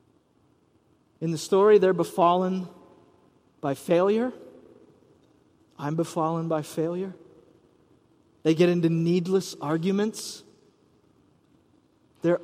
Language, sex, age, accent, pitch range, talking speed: English, male, 30-49, American, 160-200 Hz, 80 wpm